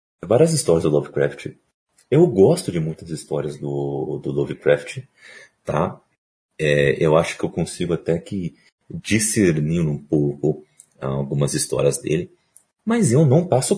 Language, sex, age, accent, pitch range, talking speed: Portuguese, male, 40-59, Brazilian, 75-125 Hz, 135 wpm